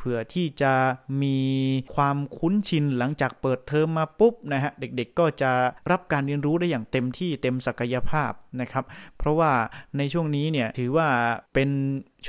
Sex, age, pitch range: male, 30-49, 130-150 Hz